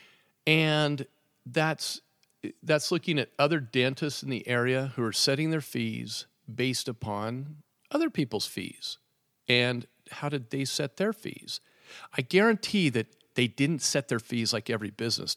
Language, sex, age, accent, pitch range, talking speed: English, male, 50-69, American, 115-145 Hz, 150 wpm